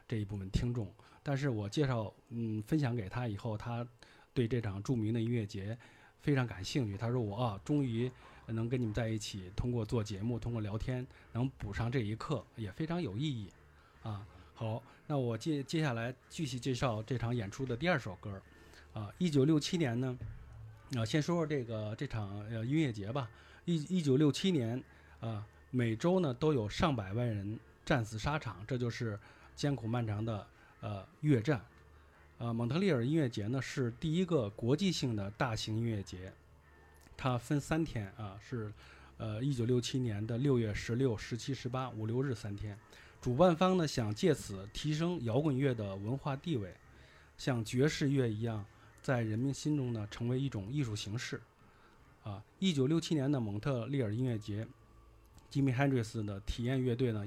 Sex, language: male, Chinese